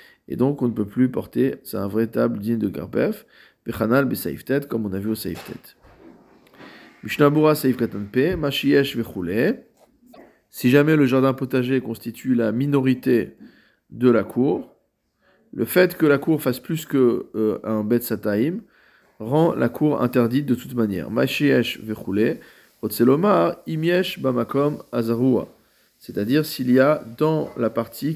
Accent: French